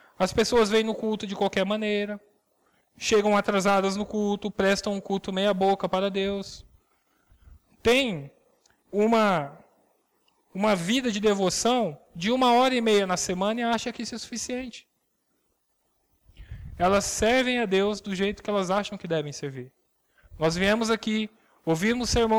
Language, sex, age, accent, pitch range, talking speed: Portuguese, male, 20-39, Brazilian, 185-230 Hz, 145 wpm